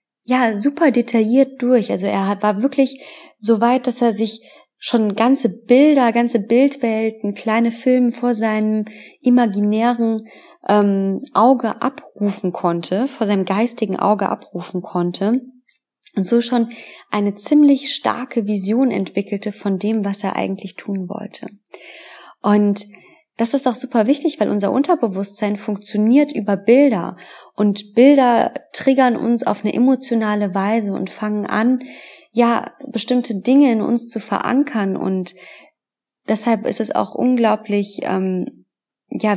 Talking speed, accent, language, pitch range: 130 wpm, German, German, 200-245 Hz